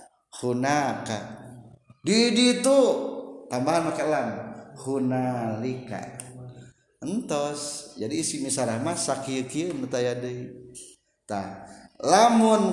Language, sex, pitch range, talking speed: Indonesian, male, 135-215 Hz, 65 wpm